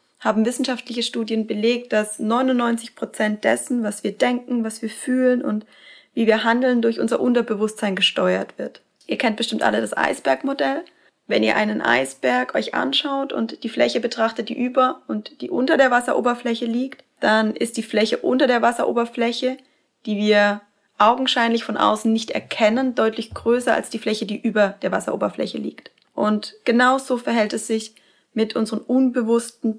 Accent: German